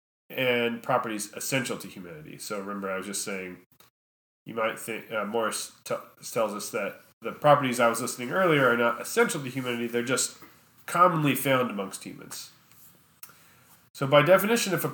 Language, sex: English, male